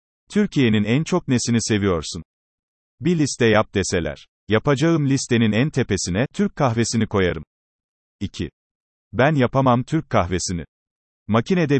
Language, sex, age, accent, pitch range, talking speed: Turkish, male, 40-59, native, 100-130 Hz, 110 wpm